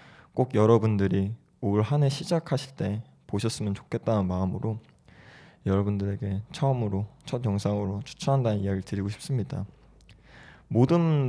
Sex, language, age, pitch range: male, Korean, 20-39, 105-140 Hz